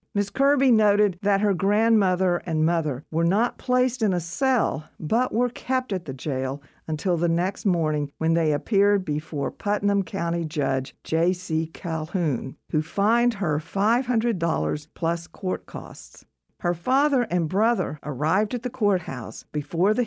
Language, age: English, 50-69